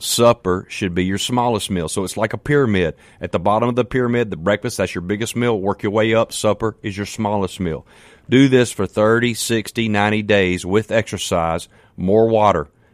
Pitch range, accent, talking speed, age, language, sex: 95-115 Hz, American, 200 wpm, 40-59, English, male